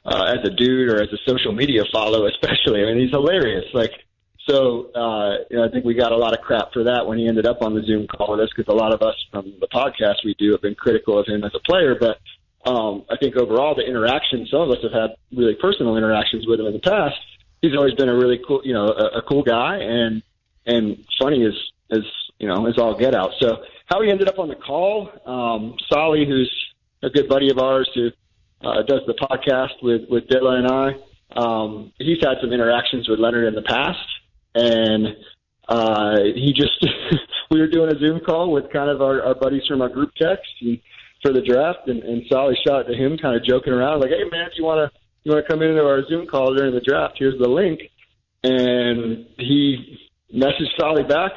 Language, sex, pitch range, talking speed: English, male, 115-140 Hz, 230 wpm